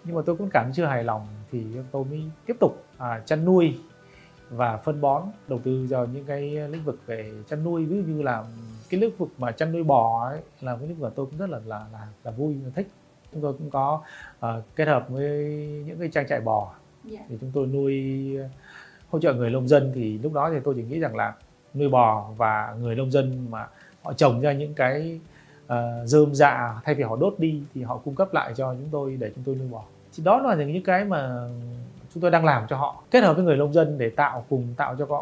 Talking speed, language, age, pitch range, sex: 240 wpm, Vietnamese, 20-39, 120-155 Hz, male